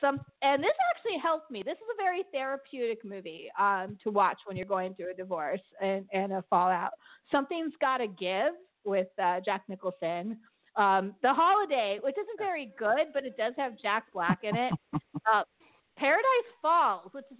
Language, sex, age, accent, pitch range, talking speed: English, female, 40-59, American, 200-285 Hz, 175 wpm